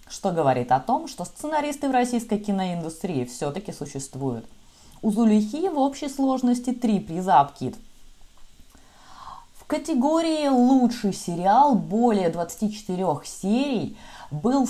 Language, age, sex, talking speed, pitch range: Russian, 20-39, female, 110 wpm, 170-245 Hz